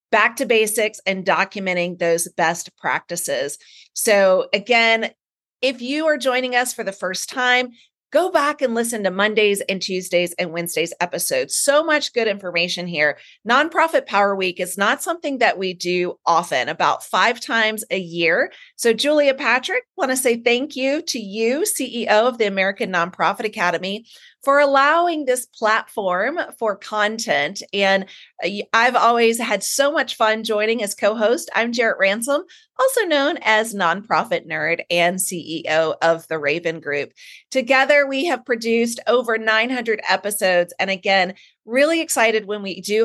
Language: English